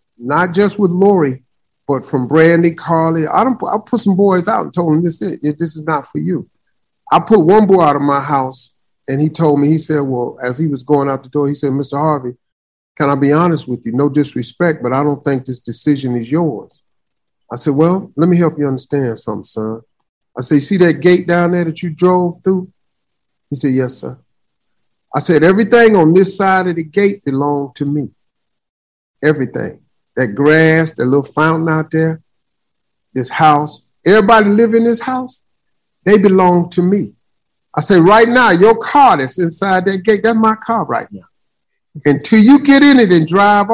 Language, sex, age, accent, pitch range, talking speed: English, male, 50-69, American, 140-185 Hz, 200 wpm